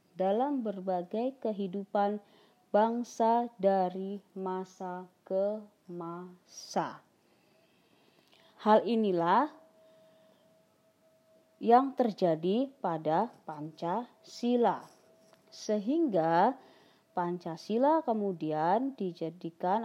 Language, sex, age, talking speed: Indonesian, female, 20-39, 55 wpm